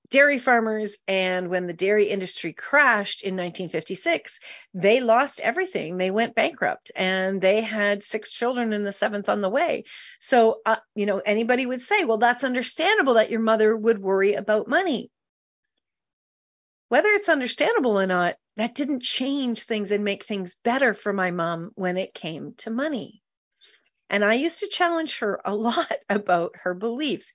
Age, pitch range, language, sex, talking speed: 40-59, 190-240 Hz, English, female, 165 wpm